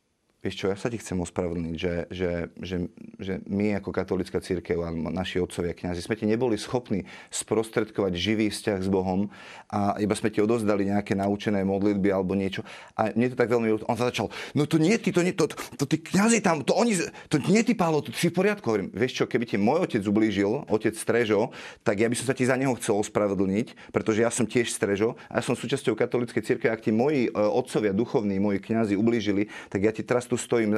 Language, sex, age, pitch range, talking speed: Slovak, male, 30-49, 105-135 Hz, 215 wpm